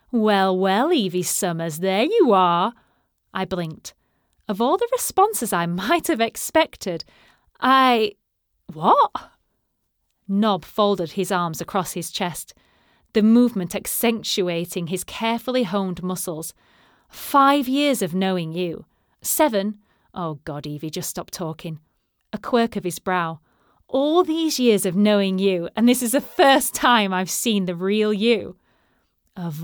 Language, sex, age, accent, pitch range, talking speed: English, female, 30-49, British, 175-230 Hz, 140 wpm